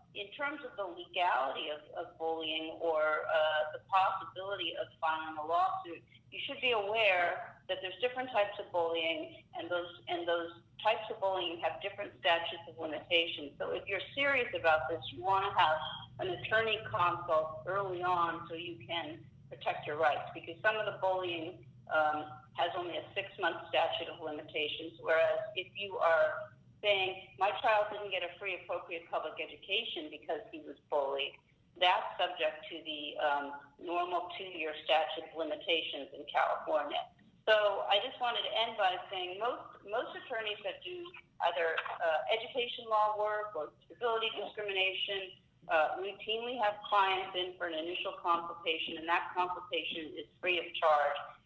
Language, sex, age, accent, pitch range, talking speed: English, female, 40-59, American, 160-205 Hz, 160 wpm